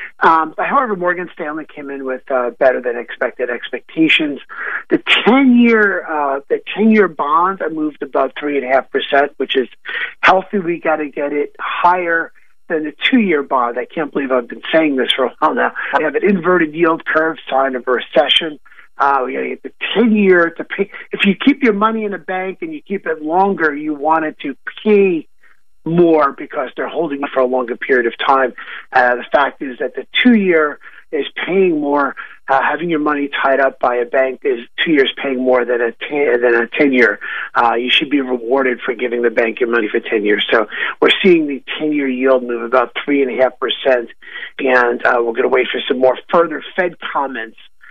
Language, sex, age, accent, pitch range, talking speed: English, male, 50-69, American, 135-190 Hz, 205 wpm